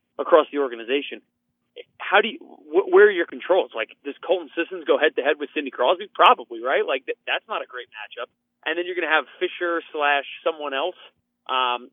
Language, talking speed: English, 210 wpm